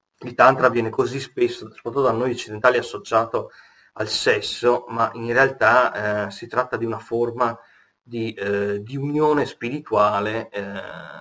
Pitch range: 110-130 Hz